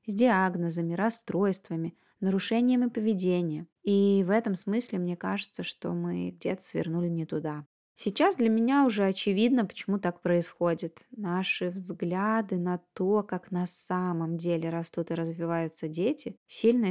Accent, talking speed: native, 135 wpm